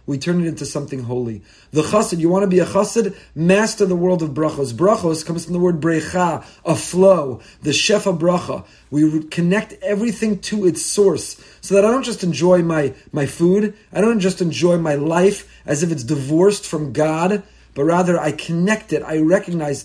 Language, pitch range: English, 160-205 Hz